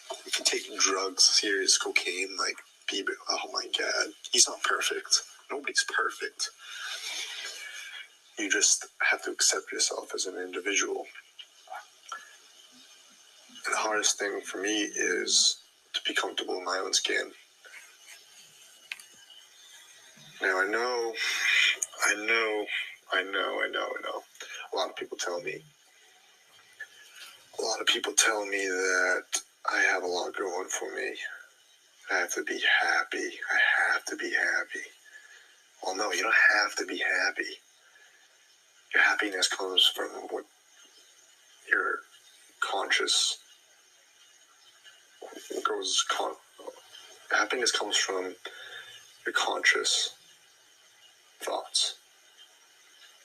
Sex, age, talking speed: male, 30-49, 115 wpm